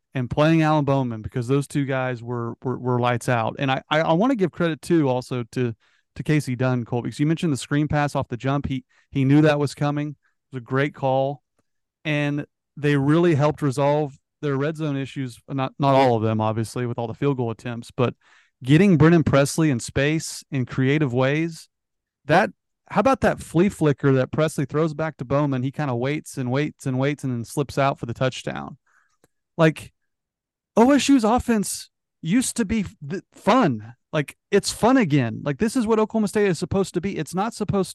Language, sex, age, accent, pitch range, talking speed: English, male, 30-49, American, 130-170 Hz, 205 wpm